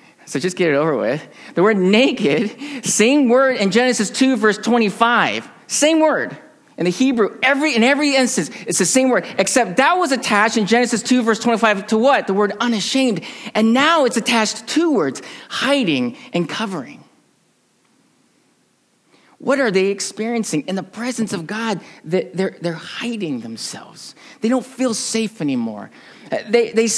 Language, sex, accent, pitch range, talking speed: English, male, American, 195-255 Hz, 160 wpm